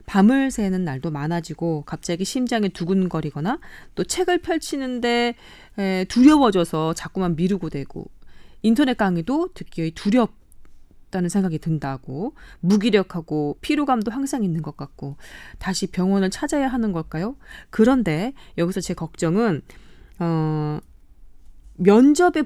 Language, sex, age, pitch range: Korean, female, 20-39, 165-235 Hz